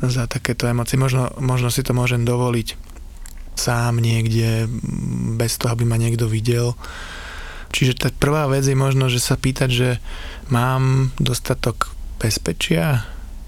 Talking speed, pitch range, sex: 135 wpm, 110-130 Hz, male